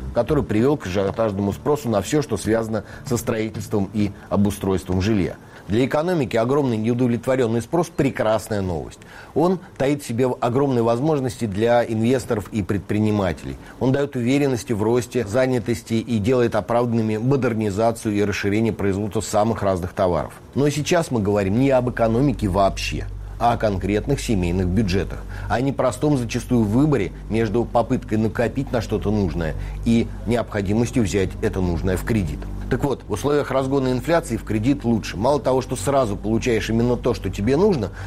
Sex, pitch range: male, 105-130 Hz